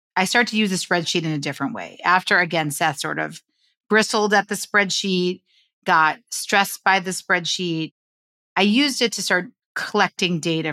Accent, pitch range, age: American, 160-195 Hz, 40-59